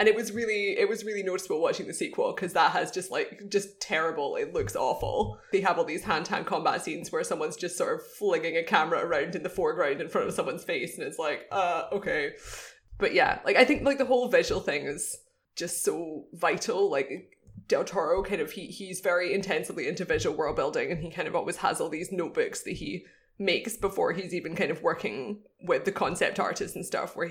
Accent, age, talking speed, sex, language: British, 20-39, 225 wpm, female, English